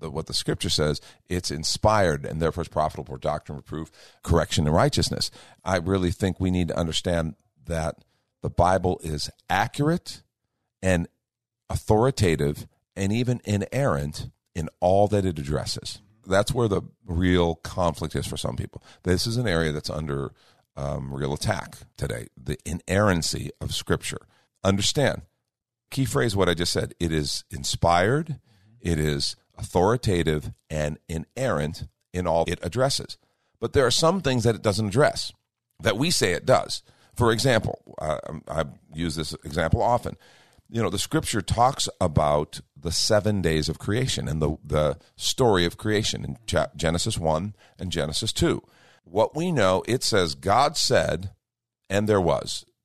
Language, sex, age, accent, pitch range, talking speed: English, male, 50-69, American, 80-115 Hz, 155 wpm